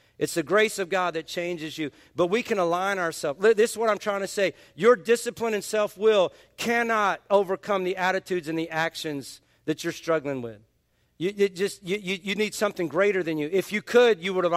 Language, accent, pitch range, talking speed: English, American, 160-200 Hz, 215 wpm